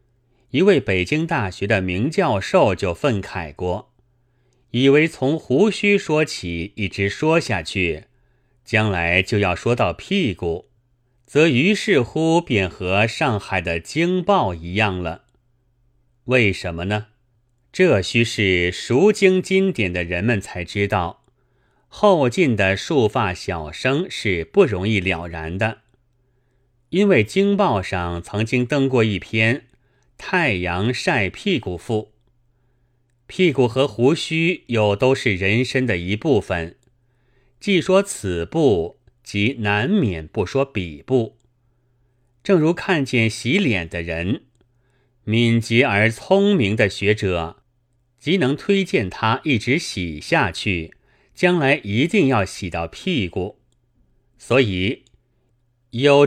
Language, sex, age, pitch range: Chinese, male, 30-49, 100-130 Hz